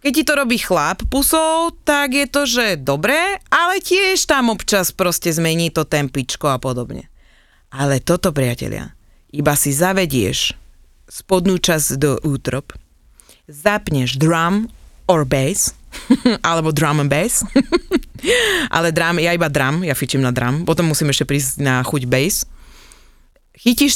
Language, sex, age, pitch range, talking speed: Slovak, female, 30-49, 140-210 Hz, 140 wpm